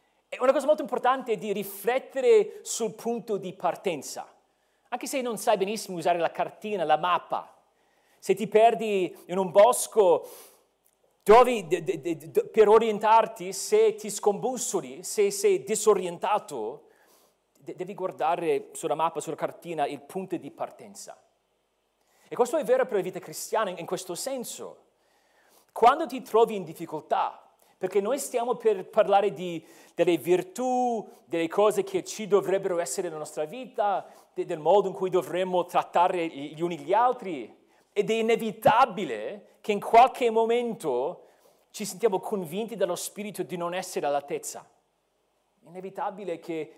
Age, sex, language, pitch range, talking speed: 40-59, male, Italian, 180-245 Hz, 145 wpm